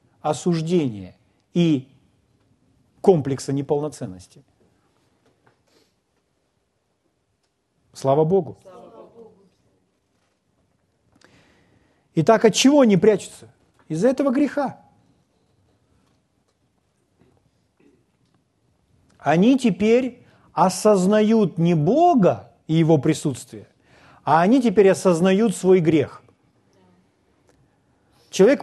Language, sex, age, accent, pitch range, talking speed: Russian, male, 50-69, native, 130-180 Hz, 60 wpm